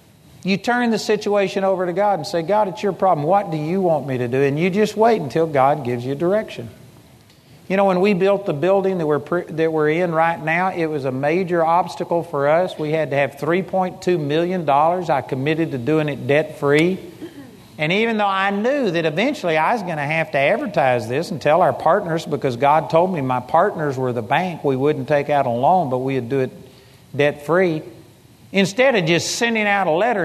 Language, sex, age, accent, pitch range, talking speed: English, male, 50-69, American, 145-195 Hz, 215 wpm